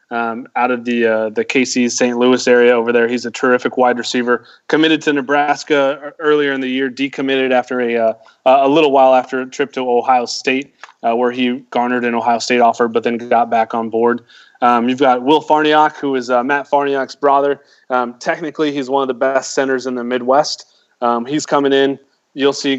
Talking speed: 210 wpm